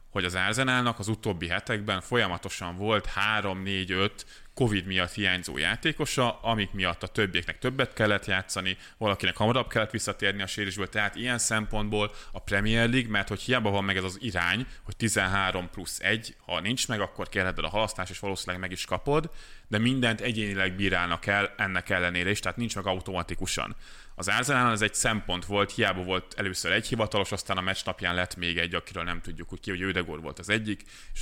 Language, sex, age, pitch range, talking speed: Hungarian, male, 30-49, 95-110 Hz, 180 wpm